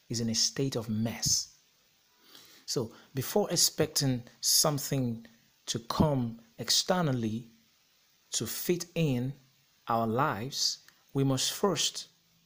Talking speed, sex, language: 100 wpm, male, English